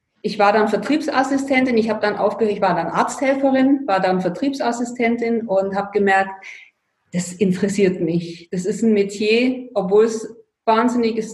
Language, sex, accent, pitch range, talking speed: German, female, German, 200-245 Hz, 150 wpm